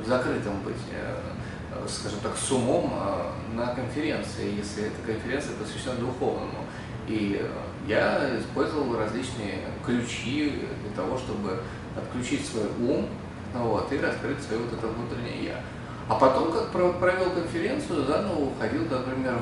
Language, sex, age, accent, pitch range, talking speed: Russian, male, 20-39, native, 110-145 Hz, 120 wpm